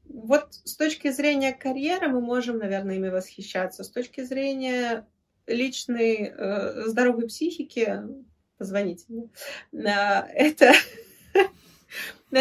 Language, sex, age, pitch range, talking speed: Russian, female, 20-39, 200-260 Hz, 90 wpm